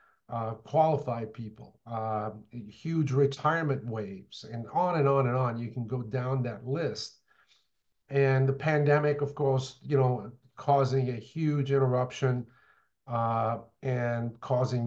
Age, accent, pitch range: 50-69, American, 120-155 Hz